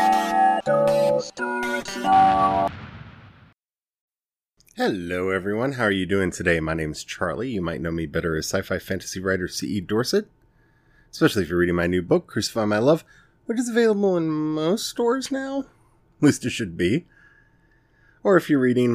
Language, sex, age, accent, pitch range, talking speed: English, male, 30-49, American, 95-155 Hz, 150 wpm